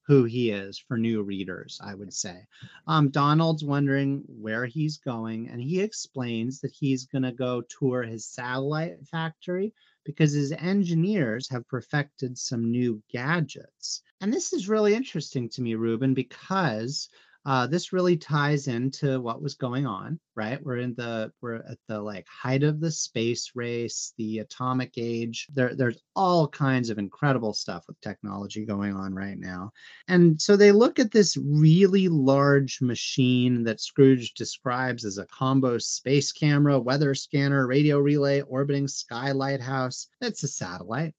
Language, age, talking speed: English, 30-49, 160 wpm